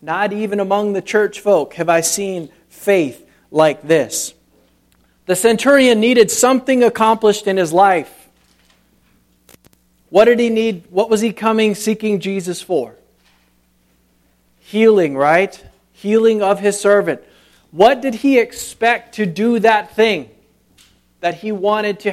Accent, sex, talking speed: American, male, 135 wpm